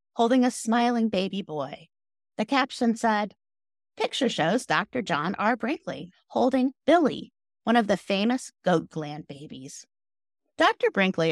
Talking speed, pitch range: 135 wpm, 170-245 Hz